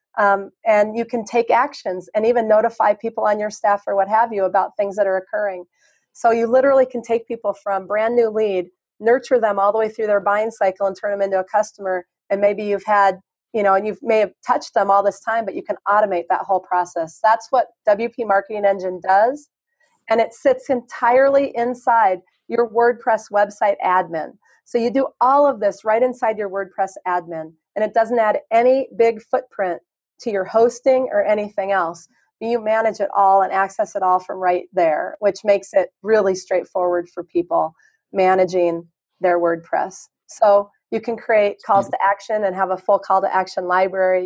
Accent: American